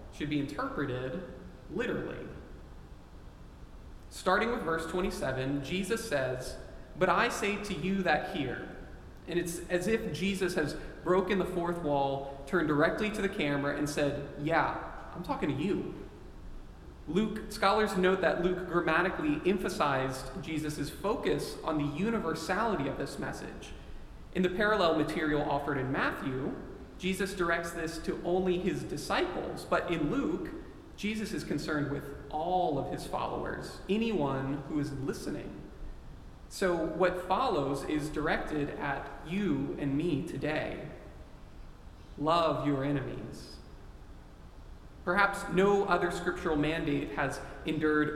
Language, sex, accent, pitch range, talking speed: English, male, American, 140-185 Hz, 130 wpm